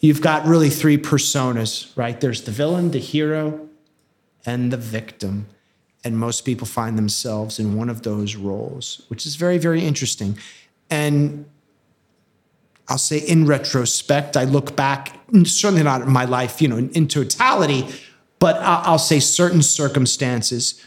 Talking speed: 145 wpm